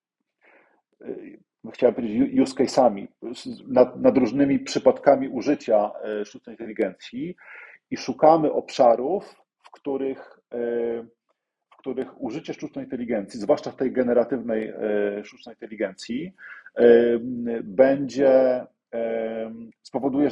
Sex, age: male, 40-59